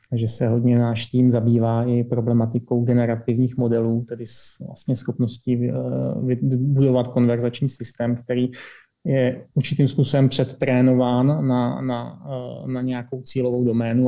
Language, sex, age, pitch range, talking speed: Czech, male, 30-49, 120-130 Hz, 110 wpm